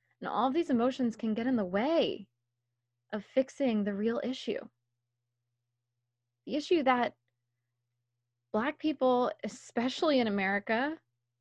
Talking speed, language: 120 wpm, English